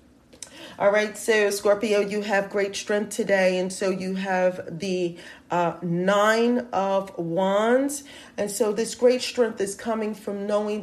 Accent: American